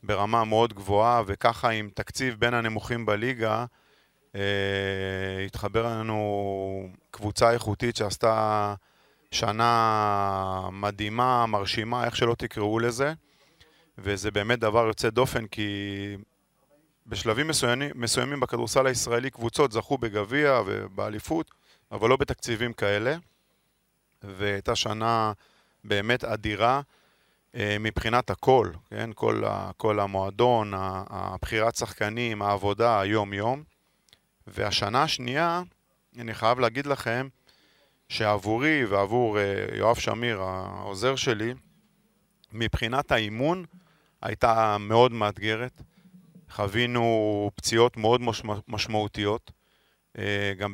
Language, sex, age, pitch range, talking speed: Hebrew, male, 30-49, 105-120 Hz, 90 wpm